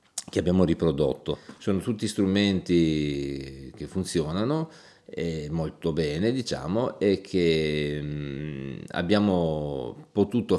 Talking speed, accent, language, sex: 90 wpm, native, Italian, male